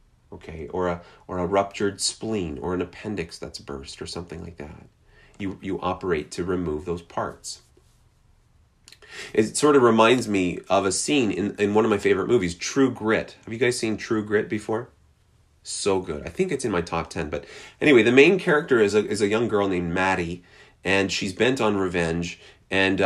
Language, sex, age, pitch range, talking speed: English, male, 30-49, 85-110 Hz, 195 wpm